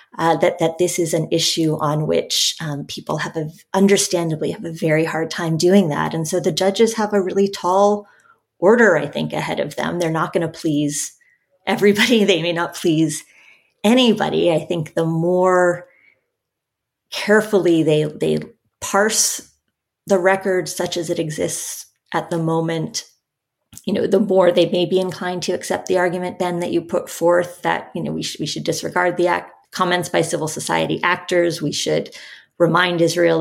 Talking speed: 180 wpm